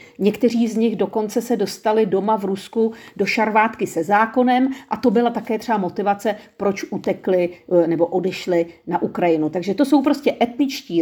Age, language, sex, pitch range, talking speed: 40-59, Czech, female, 195-245 Hz, 165 wpm